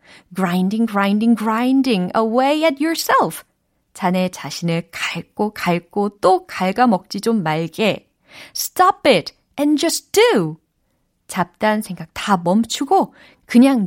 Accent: native